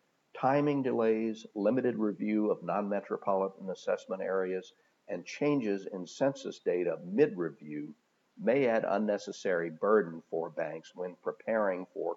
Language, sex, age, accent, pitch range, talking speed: English, male, 50-69, American, 90-130 Hz, 115 wpm